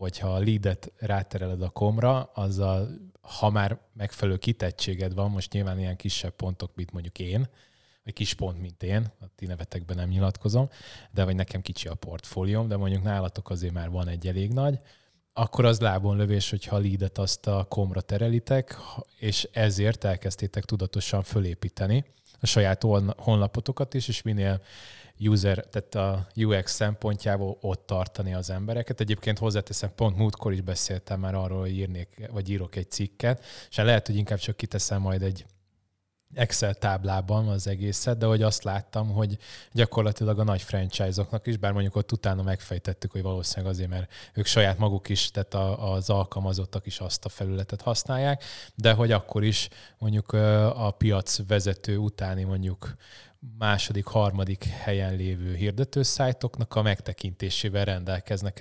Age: 20-39